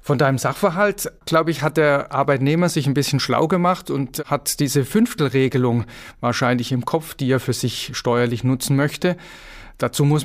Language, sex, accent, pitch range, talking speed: German, male, German, 130-165 Hz, 170 wpm